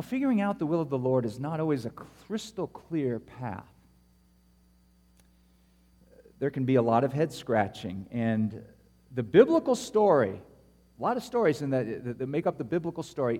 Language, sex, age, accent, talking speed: English, male, 50-69, American, 165 wpm